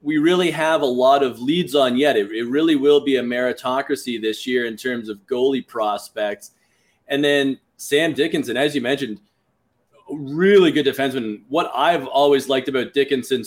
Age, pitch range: 20-39, 130-160 Hz